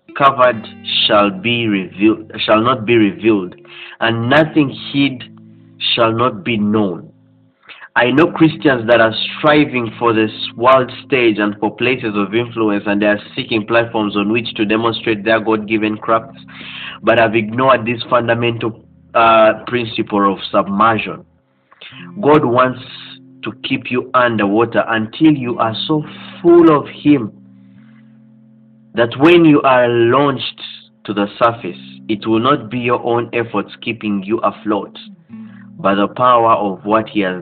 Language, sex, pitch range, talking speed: English, male, 105-125 Hz, 145 wpm